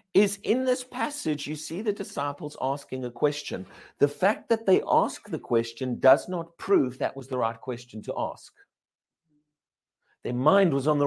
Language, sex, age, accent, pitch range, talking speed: English, male, 50-69, British, 160-230 Hz, 180 wpm